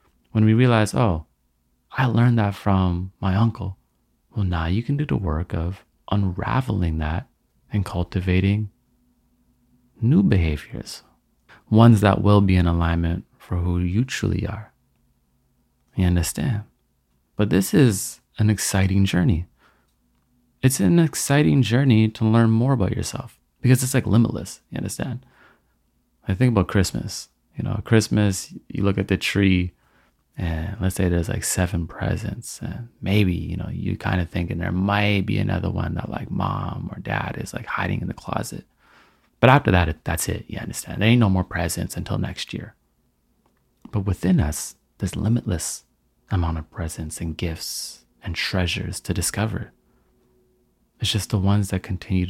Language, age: English, 30-49